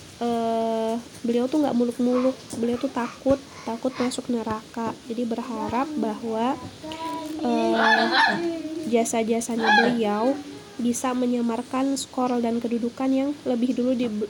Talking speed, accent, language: 110 wpm, native, Indonesian